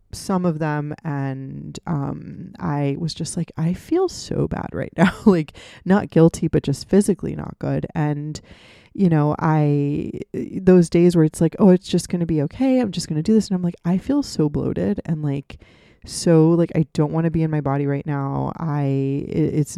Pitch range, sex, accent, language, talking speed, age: 150-175 Hz, female, American, English, 205 wpm, 20-39